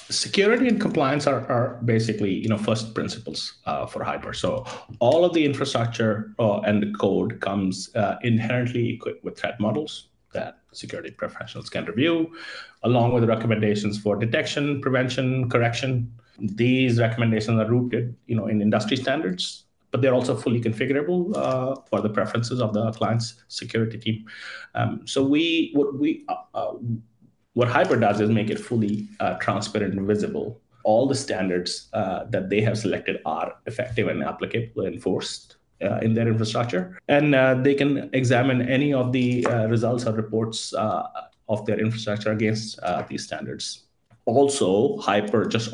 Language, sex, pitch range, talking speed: English, male, 110-130 Hz, 160 wpm